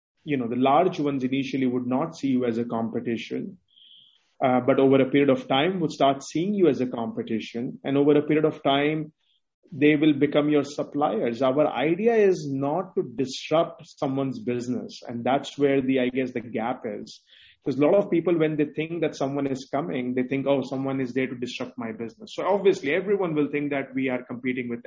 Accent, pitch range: Indian, 130-155 Hz